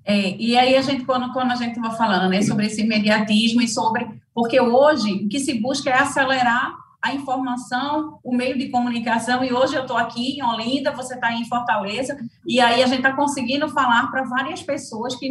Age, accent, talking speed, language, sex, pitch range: 30-49, Brazilian, 210 wpm, English, female, 235-280 Hz